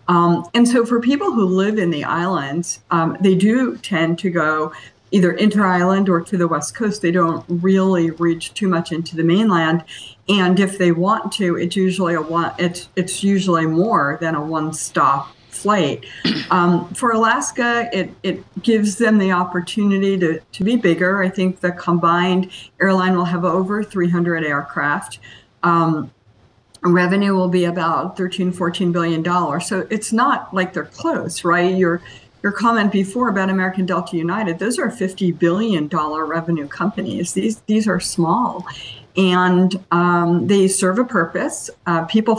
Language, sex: English, female